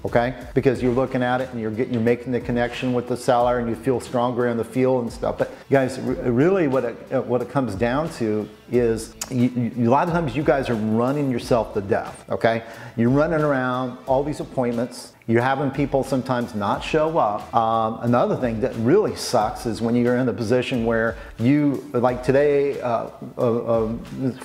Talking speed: 200 wpm